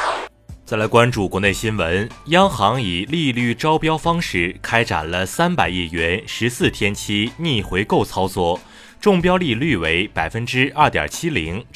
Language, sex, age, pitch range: Chinese, male, 30-49, 95-145 Hz